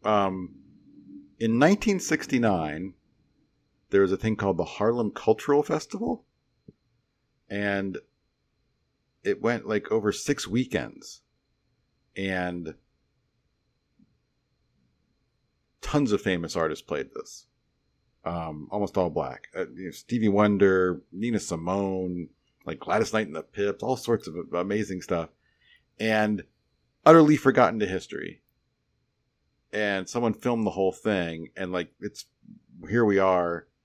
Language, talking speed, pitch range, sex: English, 115 wpm, 85-110 Hz, male